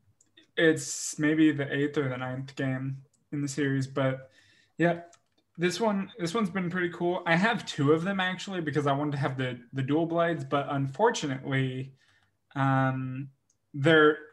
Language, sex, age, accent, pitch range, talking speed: English, male, 20-39, American, 130-155 Hz, 165 wpm